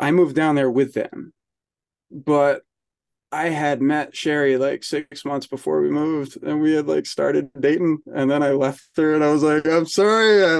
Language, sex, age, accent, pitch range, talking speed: English, male, 20-39, American, 125-145 Hz, 190 wpm